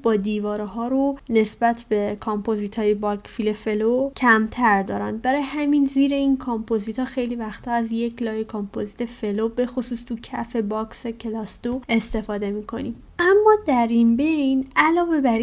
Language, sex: Persian, female